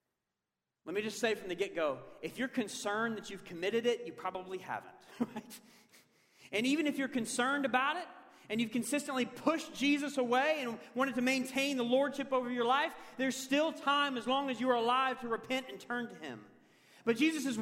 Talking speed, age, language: 195 wpm, 40-59, English